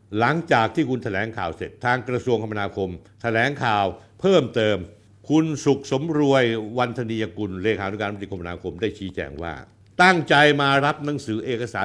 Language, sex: Thai, male